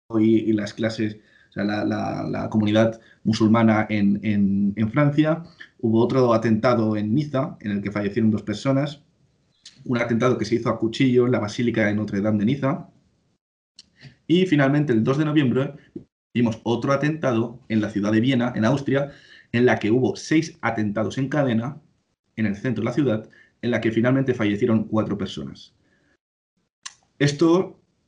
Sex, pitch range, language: male, 105-130 Hz, Spanish